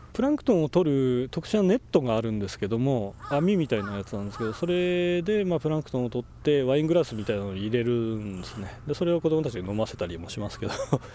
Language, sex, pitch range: Japanese, male, 105-150 Hz